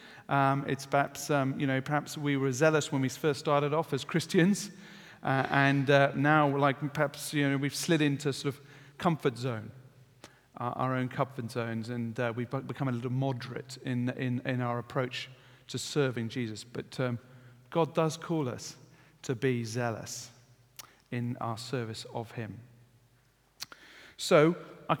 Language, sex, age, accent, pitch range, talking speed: English, male, 40-59, British, 125-155 Hz, 165 wpm